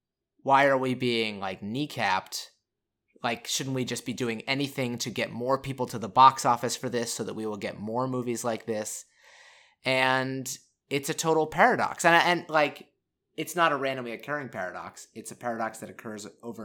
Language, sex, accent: English, male, American